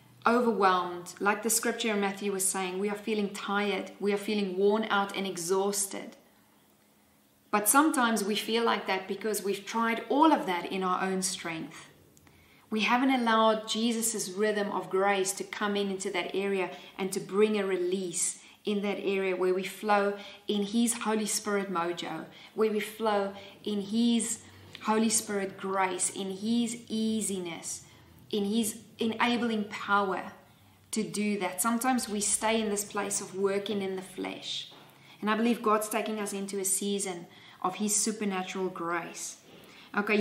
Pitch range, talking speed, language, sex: 190-215 Hz, 160 wpm, English, female